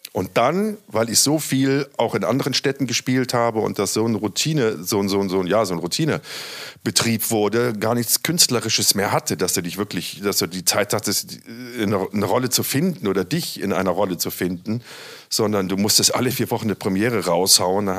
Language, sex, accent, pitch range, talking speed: German, male, German, 95-125 Hz, 215 wpm